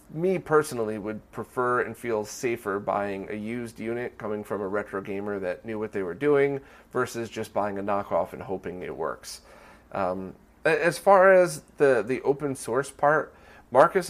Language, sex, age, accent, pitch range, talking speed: English, male, 30-49, American, 100-135 Hz, 175 wpm